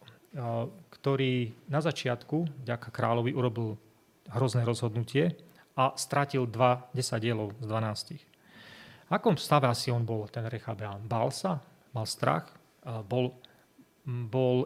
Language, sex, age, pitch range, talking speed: Slovak, male, 30-49, 120-145 Hz, 120 wpm